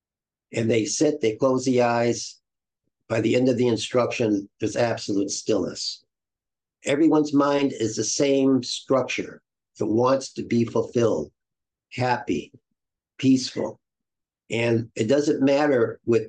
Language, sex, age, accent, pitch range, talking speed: English, male, 50-69, American, 110-130 Hz, 125 wpm